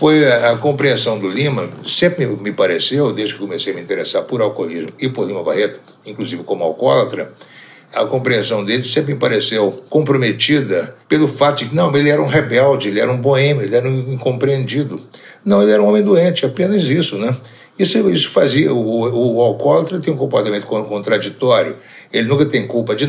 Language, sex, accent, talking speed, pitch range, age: Portuguese, male, Brazilian, 190 wpm, 110-150 Hz, 60-79